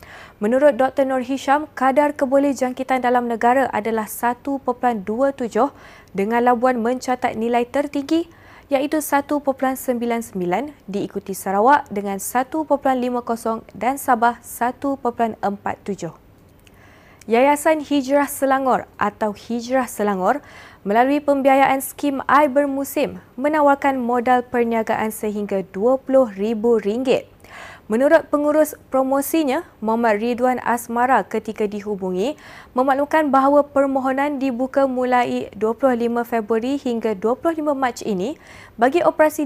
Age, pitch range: 20-39, 230-280 Hz